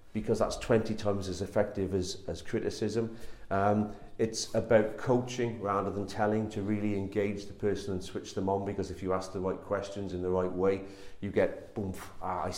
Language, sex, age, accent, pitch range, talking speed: English, male, 40-59, British, 95-115 Hz, 190 wpm